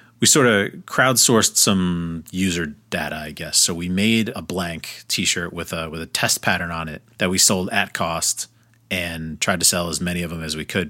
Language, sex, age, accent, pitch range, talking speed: English, male, 30-49, American, 85-105 Hz, 215 wpm